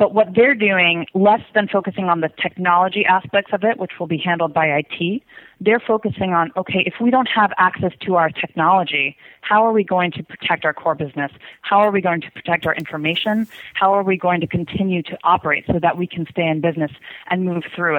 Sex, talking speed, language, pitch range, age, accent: female, 220 wpm, English, 165-200 Hz, 30-49, American